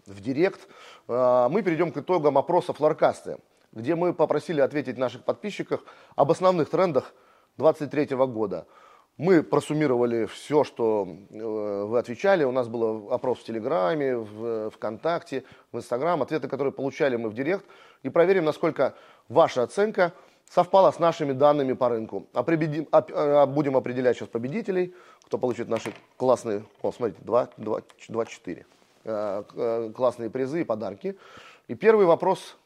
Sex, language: male, Russian